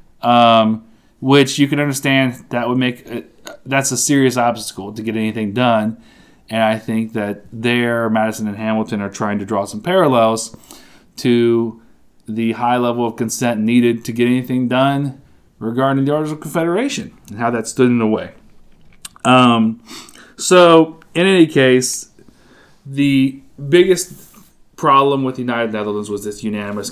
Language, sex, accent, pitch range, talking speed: English, male, American, 110-135 Hz, 155 wpm